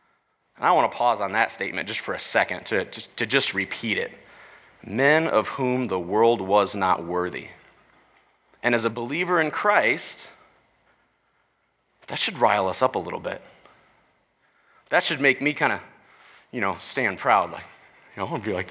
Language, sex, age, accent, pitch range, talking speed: English, male, 30-49, American, 130-175 Hz, 185 wpm